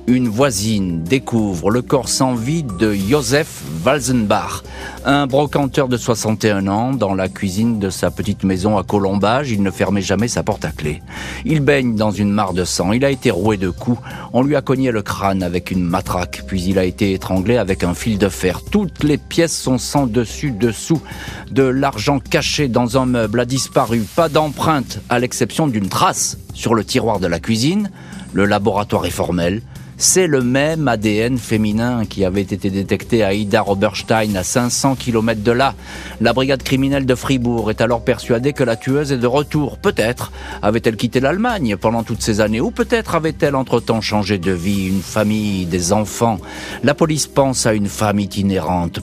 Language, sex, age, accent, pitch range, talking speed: French, male, 40-59, French, 100-135 Hz, 185 wpm